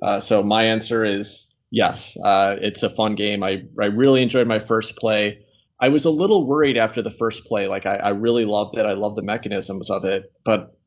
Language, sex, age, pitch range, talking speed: English, male, 20-39, 100-110 Hz, 220 wpm